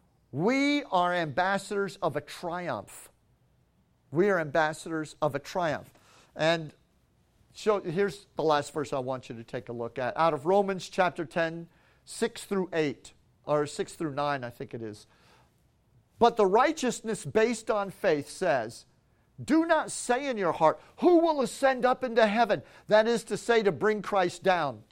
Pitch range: 170-240 Hz